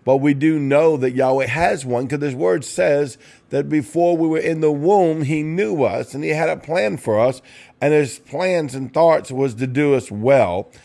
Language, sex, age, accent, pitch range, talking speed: English, male, 50-69, American, 125-155 Hz, 215 wpm